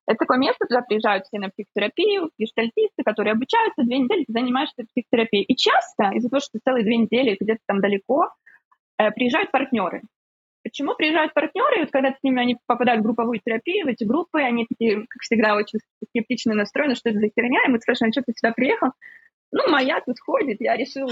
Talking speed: 200 wpm